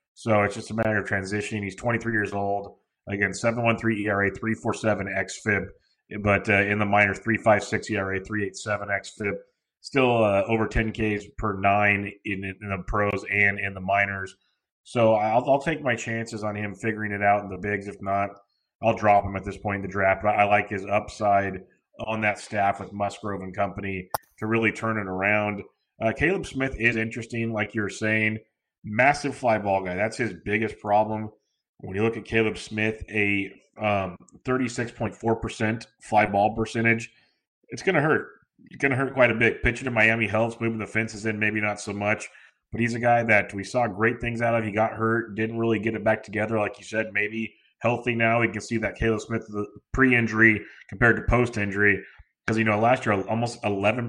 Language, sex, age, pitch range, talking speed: English, male, 30-49, 100-115 Hz, 195 wpm